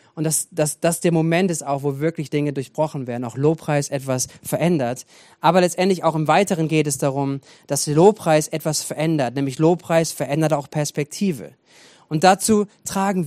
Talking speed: 165 wpm